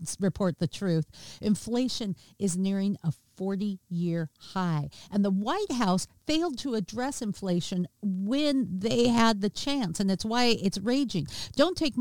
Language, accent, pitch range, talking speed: English, American, 170-230 Hz, 145 wpm